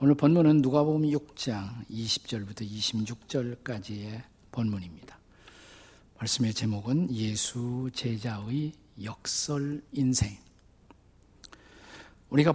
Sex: male